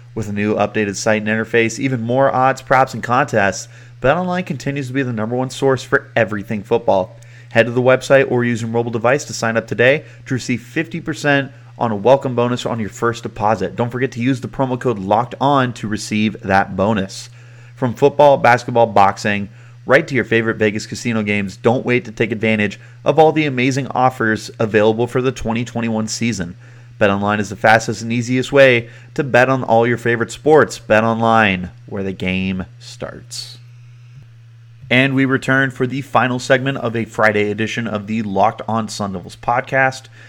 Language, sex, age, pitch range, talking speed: English, male, 30-49, 110-130 Hz, 190 wpm